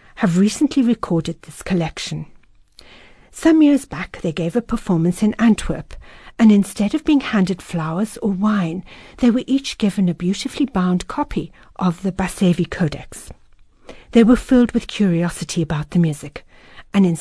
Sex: female